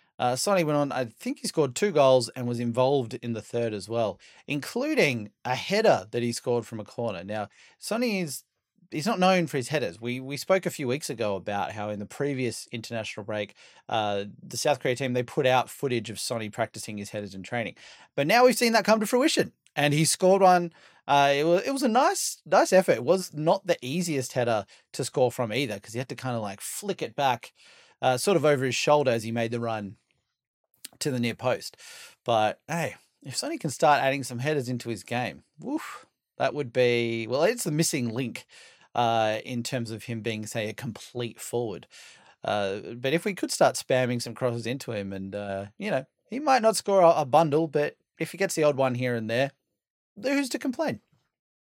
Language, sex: English, male